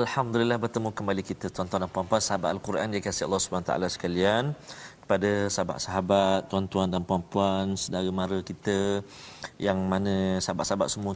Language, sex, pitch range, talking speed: Malayalam, male, 90-105 Hz, 140 wpm